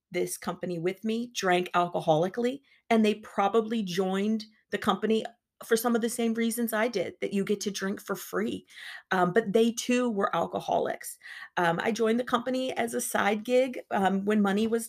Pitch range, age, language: 185-225 Hz, 40-59, English